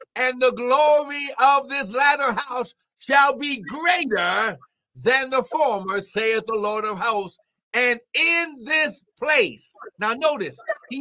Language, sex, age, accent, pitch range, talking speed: English, male, 60-79, American, 175-260 Hz, 135 wpm